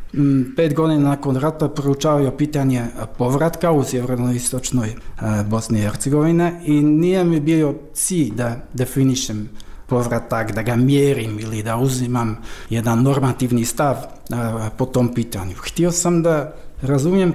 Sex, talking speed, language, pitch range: male, 125 wpm, Croatian, 125-160 Hz